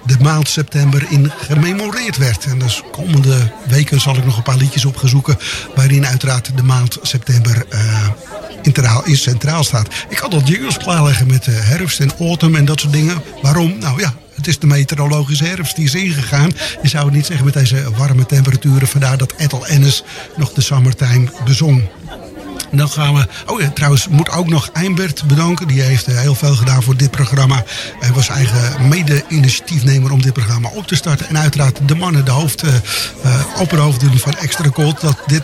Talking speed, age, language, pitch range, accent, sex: 195 wpm, 50-69, English, 130-150 Hz, Dutch, male